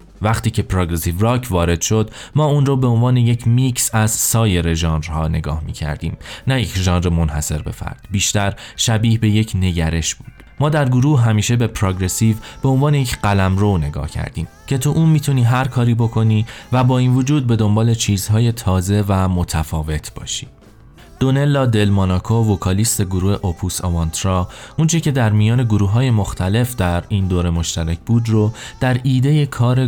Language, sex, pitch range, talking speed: Persian, male, 90-125 Hz, 170 wpm